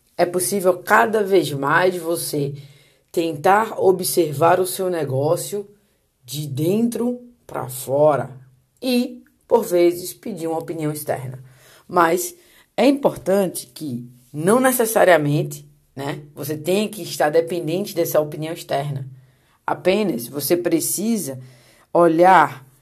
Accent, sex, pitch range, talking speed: Brazilian, female, 150-185 Hz, 110 wpm